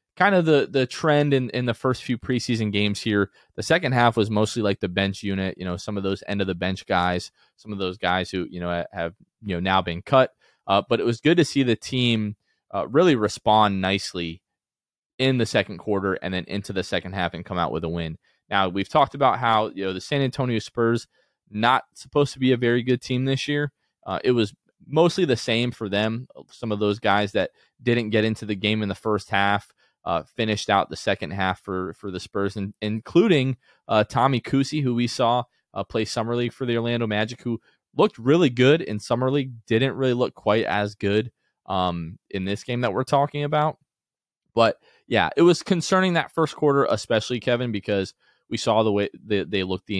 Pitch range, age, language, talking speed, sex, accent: 100-125 Hz, 20-39, English, 220 wpm, male, American